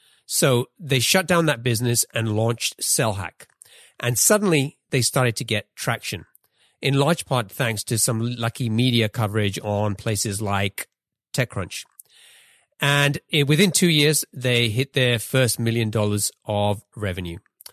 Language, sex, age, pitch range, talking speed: English, male, 40-59, 105-125 Hz, 140 wpm